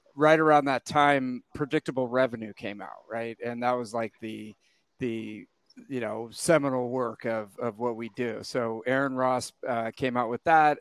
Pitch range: 120-135 Hz